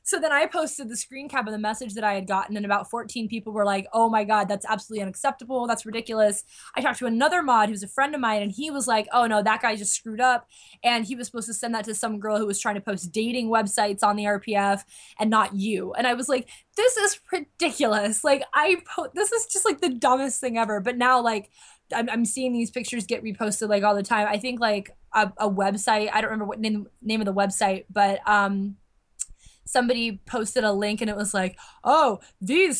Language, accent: English, American